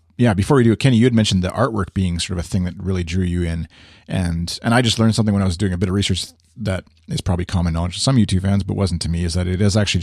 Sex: male